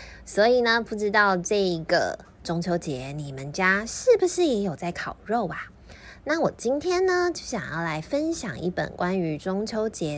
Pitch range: 175-260 Hz